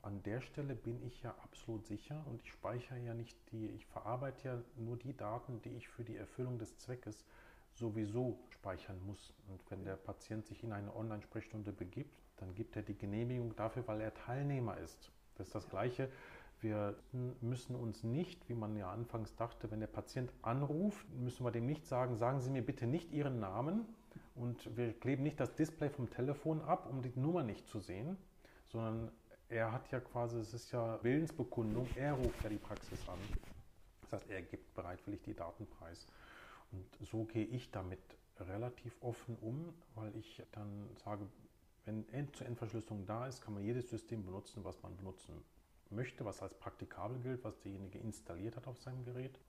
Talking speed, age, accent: 185 wpm, 40-59, German